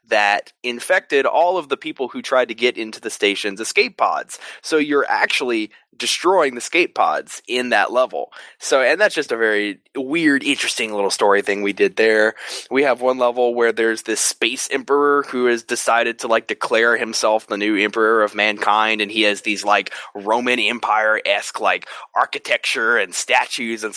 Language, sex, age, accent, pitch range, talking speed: English, male, 20-39, American, 110-155 Hz, 185 wpm